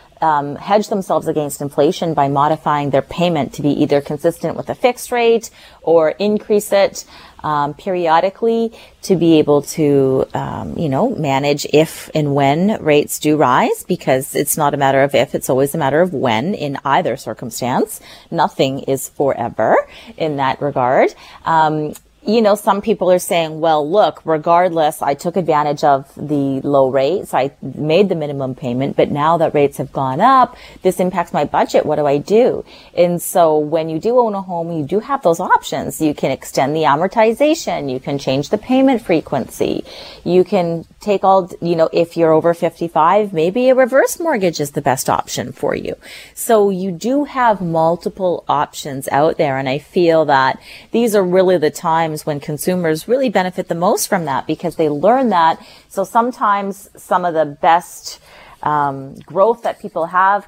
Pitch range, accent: 145-190 Hz, American